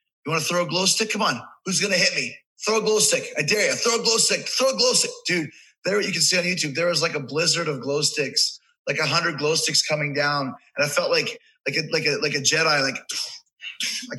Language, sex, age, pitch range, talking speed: English, male, 20-39, 150-200 Hz, 270 wpm